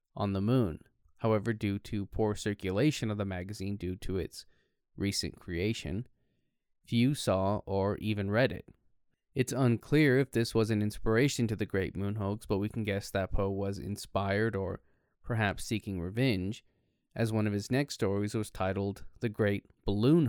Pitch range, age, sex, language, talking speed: 100-120 Hz, 20-39, male, English, 170 wpm